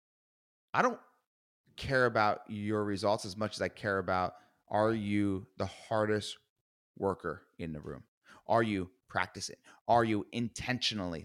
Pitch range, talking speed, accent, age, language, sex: 105-170 Hz, 140 wpm, American, 30-49, English, male